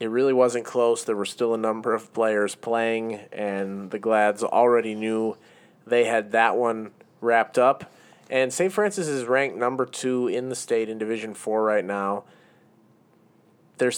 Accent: American